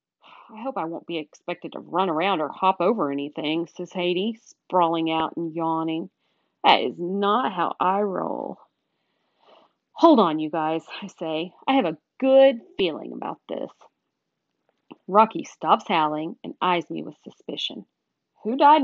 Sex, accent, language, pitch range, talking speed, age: female, American, English, 165-275 Hz, 155 wpm, 40-59